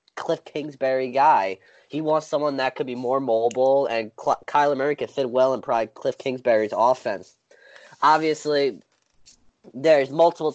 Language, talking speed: English, 140 wpm